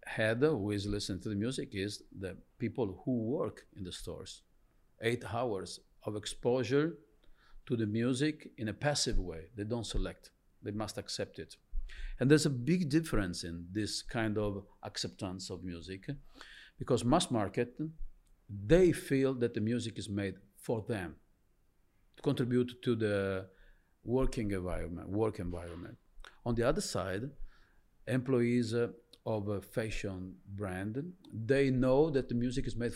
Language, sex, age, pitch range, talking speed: English, male, 50-69, 100-130 Hz, 150 wpm